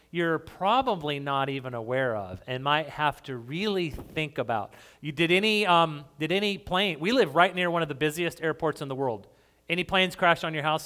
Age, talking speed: 30-49, 210 wpm